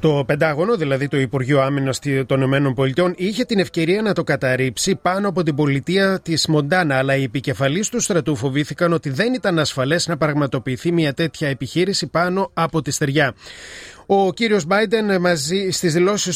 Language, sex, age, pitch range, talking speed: Greek, male, 30-49, 140-185 Hz, 165 wpm